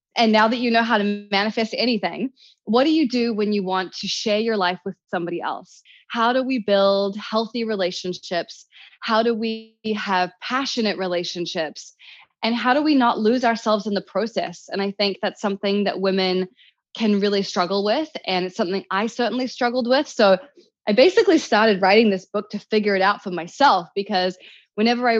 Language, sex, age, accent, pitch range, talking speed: English, female, 20-39, American, 190-235 Hz, 190 wpm